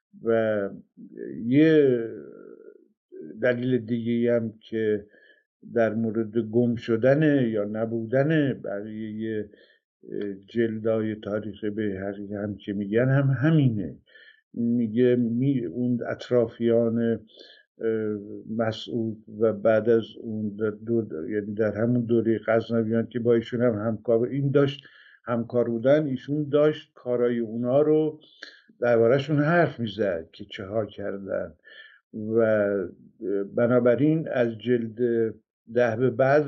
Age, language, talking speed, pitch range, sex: 50-69, Persian, 105 wpm, 110-135 Hz, male